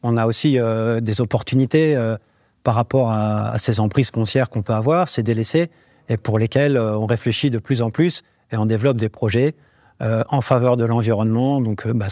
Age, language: 40-59, French